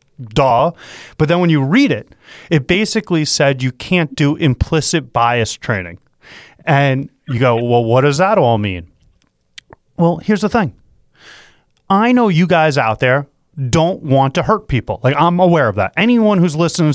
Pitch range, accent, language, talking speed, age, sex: 130-195 Hz, American, English, 170 wpm, 30-49, male